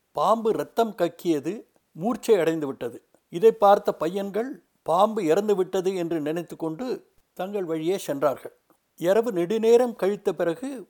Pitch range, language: 165-215 Hz, Tamil